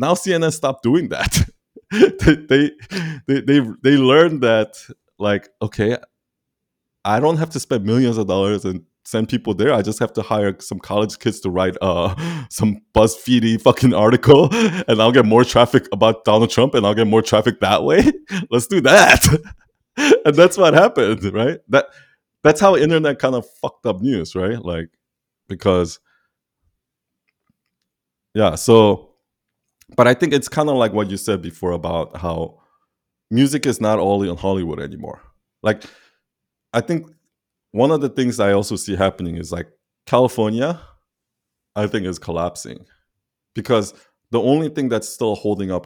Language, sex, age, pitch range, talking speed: English, male, 20-39, 100-135 Hz, 160 wpm